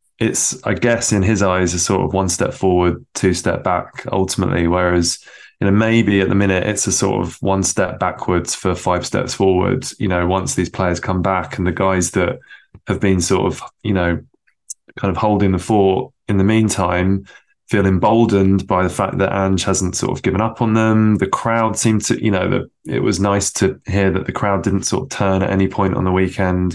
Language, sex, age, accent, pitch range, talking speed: English, male, 20-39, British, 95-110 Hz, 220 wpm